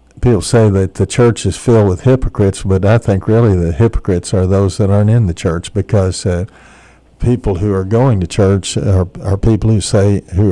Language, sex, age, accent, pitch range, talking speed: English, male, 60-79, American, 90-110 Hz, 205 wpm